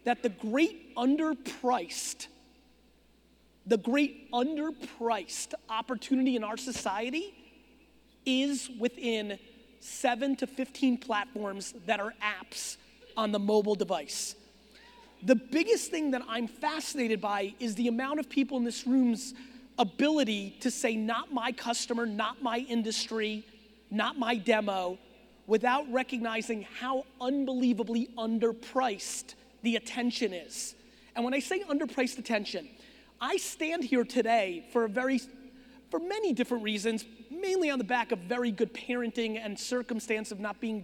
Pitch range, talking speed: 225-265 Hz, 130 wpm